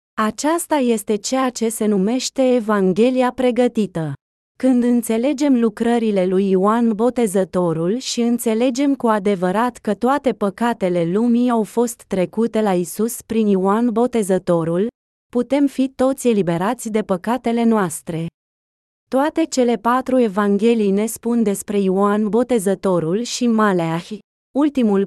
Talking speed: 115 wpm